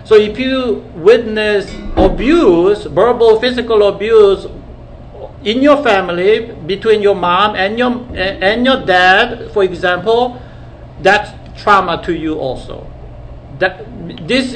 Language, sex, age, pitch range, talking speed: English, male, 60-79, 180-260 Hz, 115 wpm